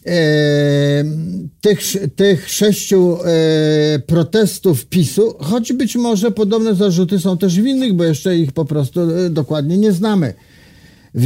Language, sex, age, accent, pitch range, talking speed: Polish, male, 50-69, native, 160-195 Hz, 115 wpm